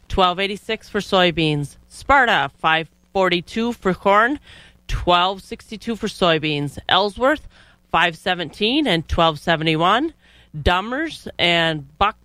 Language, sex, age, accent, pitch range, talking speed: English, female, 30-49, American, 165-220 Hz, 125 wpm